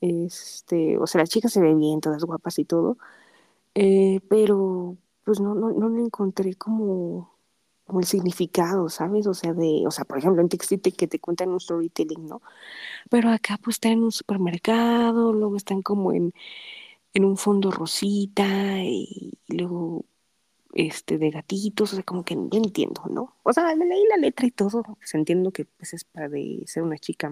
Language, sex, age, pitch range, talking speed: Spanish, female, 20-39, 165-205 Hz, 185 wpm